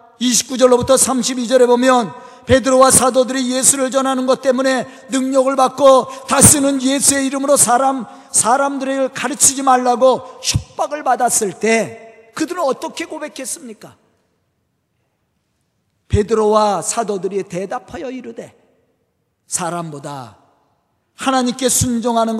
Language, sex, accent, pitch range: Korean, male, native, 225-270 Hz